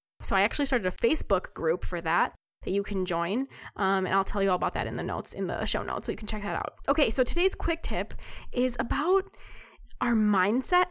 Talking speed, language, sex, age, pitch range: 235 wpm, English, female, 10-29, 195-250 Hz